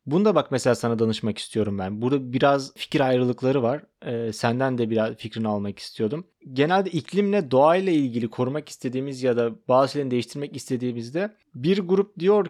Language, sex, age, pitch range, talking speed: Turkish, male, 30-49, 125-180 Hz, 165 wpm